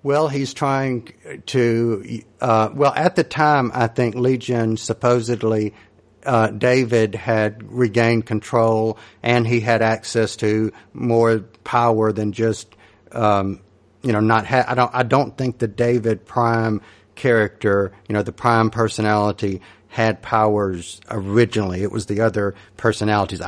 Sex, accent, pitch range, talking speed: male, American, 105-120 Hz, 140 wpm